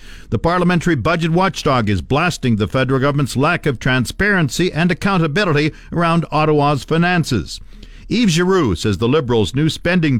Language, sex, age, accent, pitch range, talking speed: English, male, 50-69, American, 120-160 Hz, 140 wpm